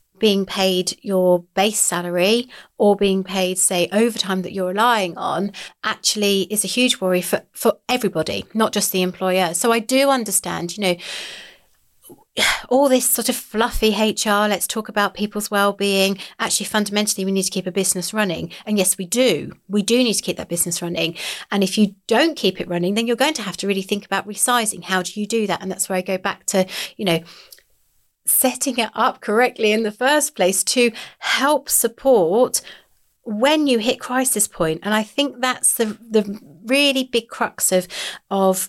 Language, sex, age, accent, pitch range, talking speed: English, female, 30-49, British, 190-230 Hz, 190 wpm